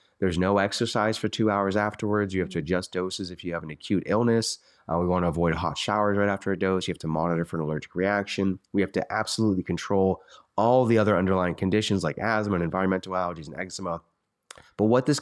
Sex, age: male, 30-49